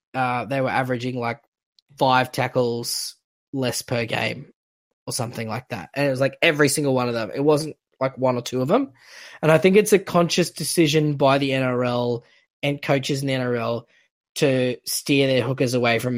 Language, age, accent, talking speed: English, 10-29, Australian, 195 wpm